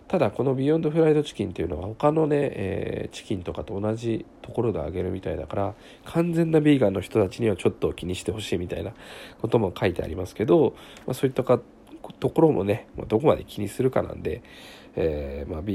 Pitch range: 90-115 Hz